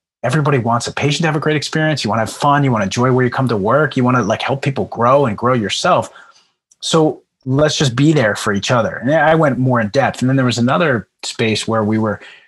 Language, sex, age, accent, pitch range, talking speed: English, male, 30-49, American, 110-135 Hz, 270 wpm